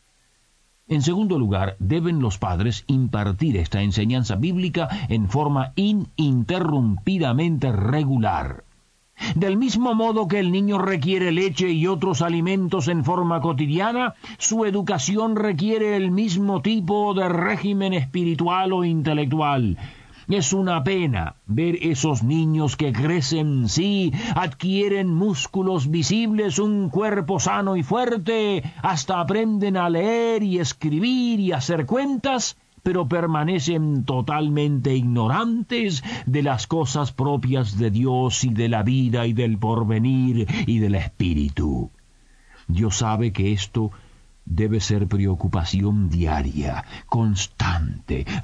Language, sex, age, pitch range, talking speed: Spanish, male, 50-69, 115-190 Hz, 115 wpm